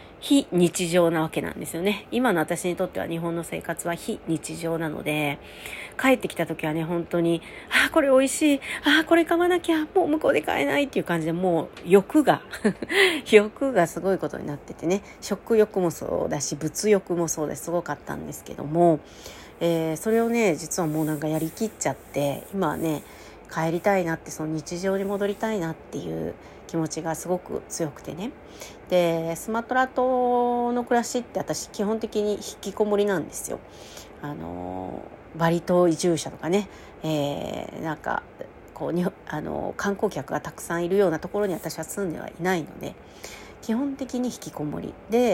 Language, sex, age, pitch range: Japanese, female, 40-59, 160-220 Hz